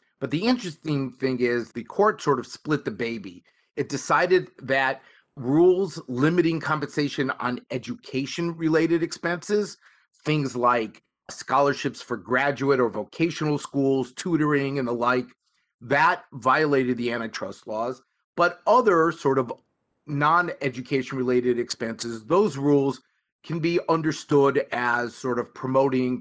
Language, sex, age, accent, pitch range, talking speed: English, male, 30-49, American, 125-155 Hz, 120 wpm